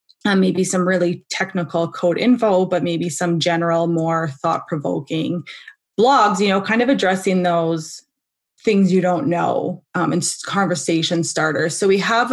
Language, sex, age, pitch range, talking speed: English, female, 20-39, 165-220 Hz, 150 wpm